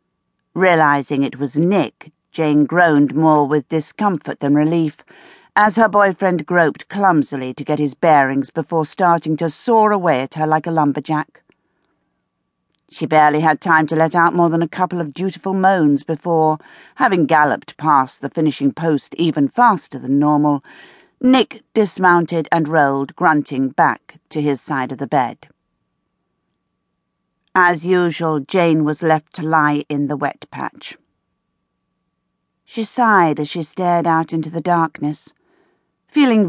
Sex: female